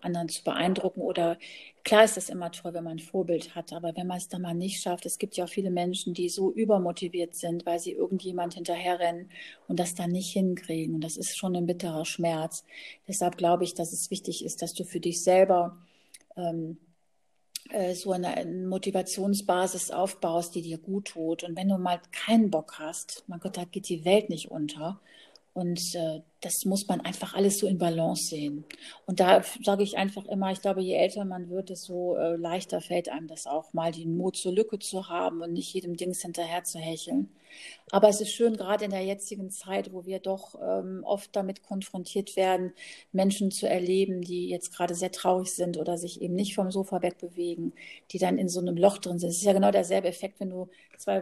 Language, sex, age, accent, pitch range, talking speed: German, female, 40-59, German, 175-195 Hz, 215 wpm